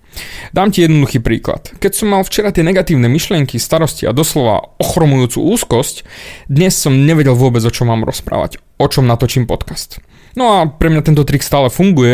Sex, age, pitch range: male, 20-39, 125-165 Hz